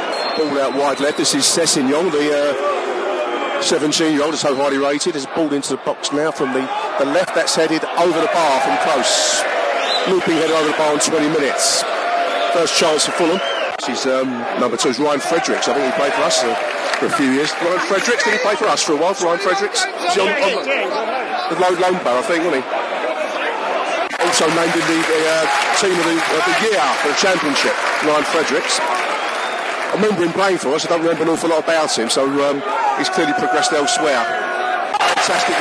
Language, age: English, 40-59